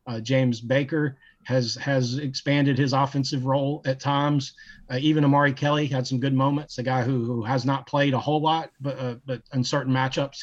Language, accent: English, American